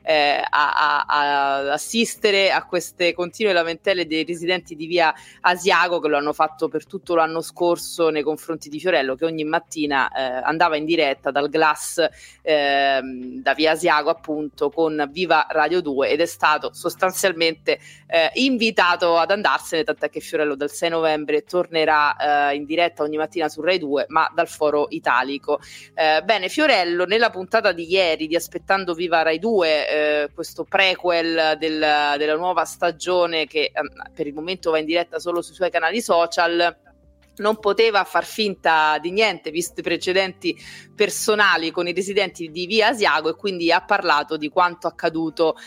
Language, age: Italian, 20-39